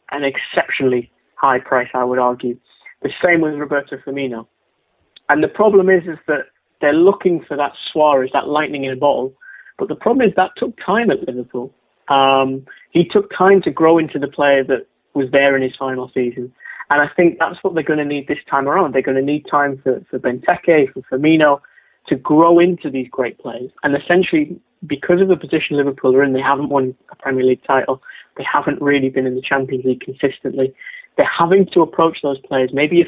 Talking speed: 205 wpm